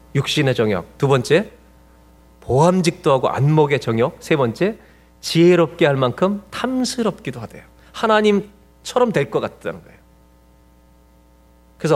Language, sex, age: Korean, male, 30-49